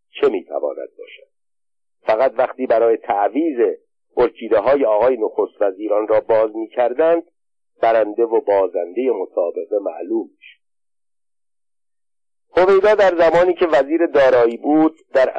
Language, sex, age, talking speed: Persian, male, 50-69, 120 wpm